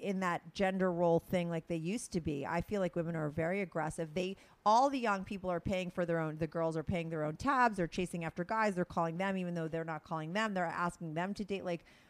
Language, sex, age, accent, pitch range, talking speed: English, female, 30-49, American, 160-205 Hz, 265 wpm